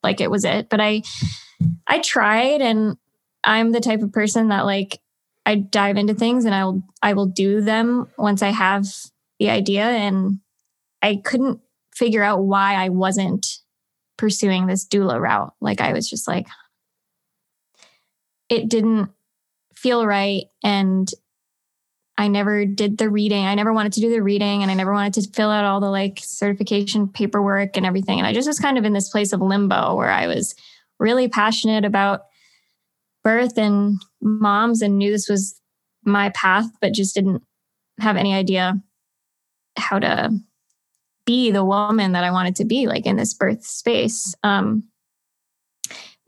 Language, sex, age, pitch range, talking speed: English, female, 20-39, 195-220 Hz, 165 wpm